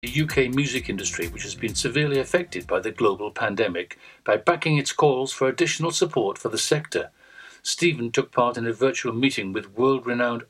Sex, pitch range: male, 115-140 Hz